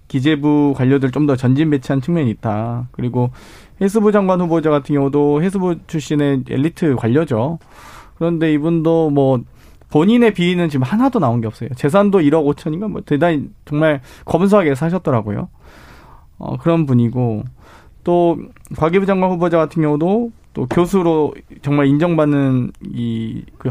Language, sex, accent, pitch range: Korean, male, native, 125-165 Hz